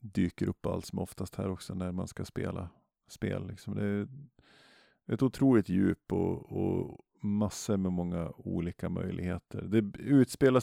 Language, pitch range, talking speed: Swedish, 90-105 Hz, 150 wpm